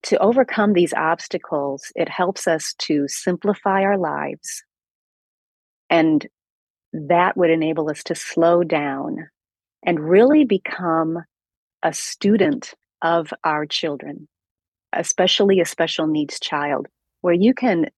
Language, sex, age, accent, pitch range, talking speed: English, female, 40-59, American, 155-200 Hz, 115 wpm